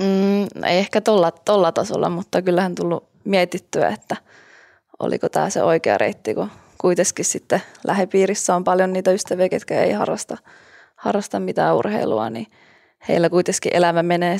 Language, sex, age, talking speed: Finnish, female, 20-39, 145 wpm